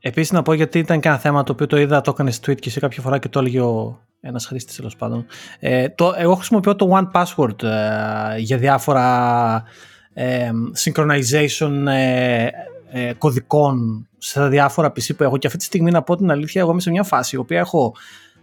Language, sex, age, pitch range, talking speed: Greek, male, 30-49, 130-175 Hz, 205 wpm